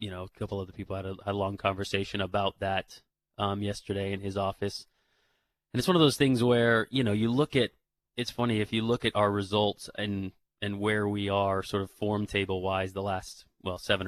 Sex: male